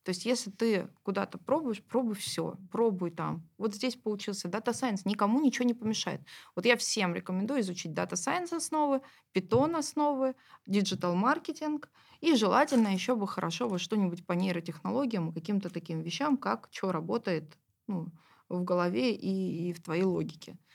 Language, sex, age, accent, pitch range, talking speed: Russian, female, 20-39, native, 170-220 Hz, 155 wpm